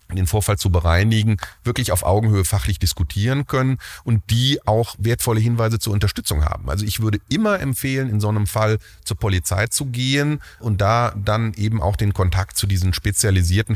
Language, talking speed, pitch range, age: German, 180 wpm, 85-105 Hz, 30-49